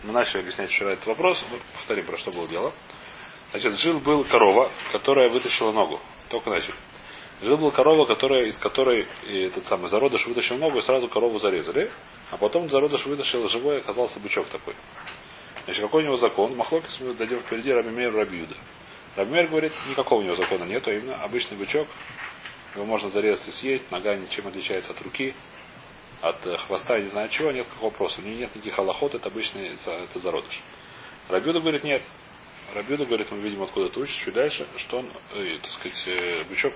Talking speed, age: 185 wpm, 30-49